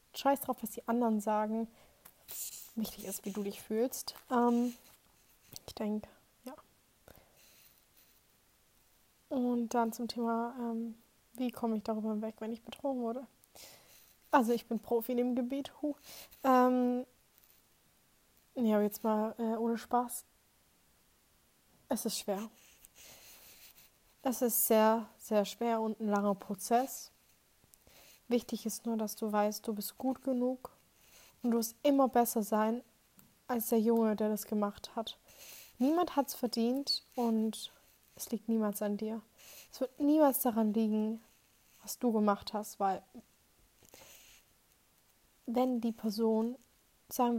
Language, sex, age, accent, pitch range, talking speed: German, female, 20-39, German, 215-245 Hz, 130 wpm